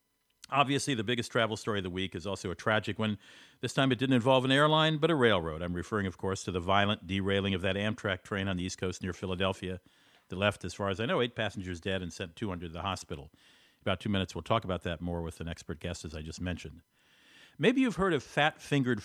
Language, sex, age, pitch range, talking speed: English, male, 50-69, 100-130 Hz, 250 wpm